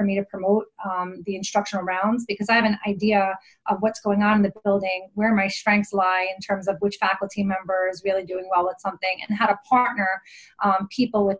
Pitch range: 190-220 Hz